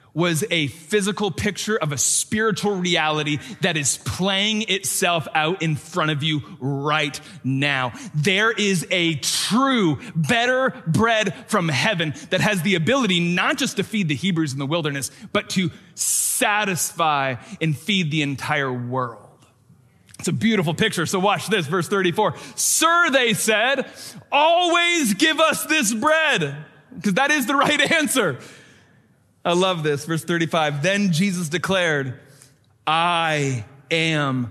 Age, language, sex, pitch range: 30-49, English, male, 145-195 Hz